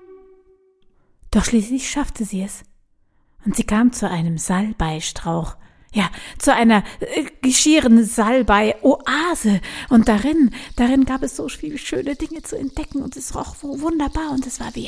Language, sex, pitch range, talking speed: German, female, 180-245 Hz, 150 wpm